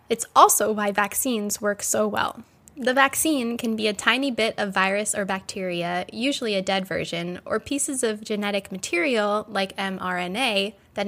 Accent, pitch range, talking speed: American, 200-260 Hz, 160 wpm